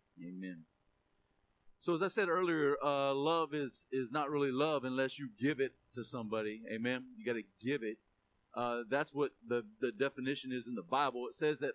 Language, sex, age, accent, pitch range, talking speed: English, male, 40-59, American, 120-155 Hz, 195 wpm